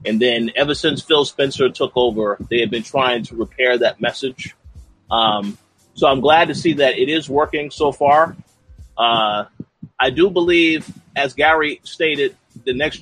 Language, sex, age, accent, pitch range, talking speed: English, male, 30-49, American, 120-165 Hz, 170 wpm